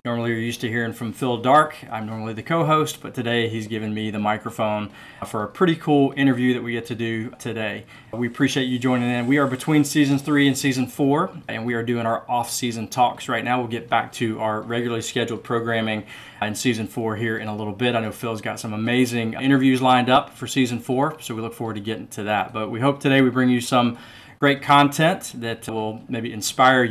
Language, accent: English, American